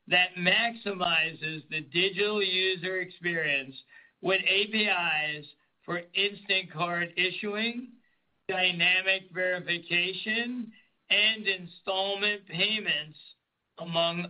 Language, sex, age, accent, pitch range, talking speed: English, male, 60-79, American, 165-200 Hz, 75 wpm